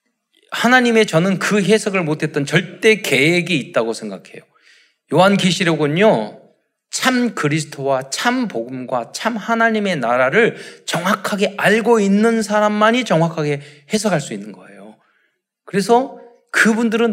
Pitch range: 135-210 Hz